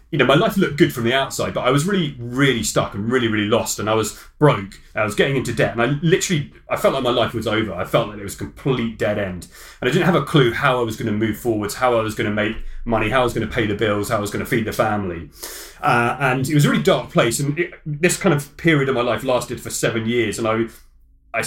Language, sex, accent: English, male, British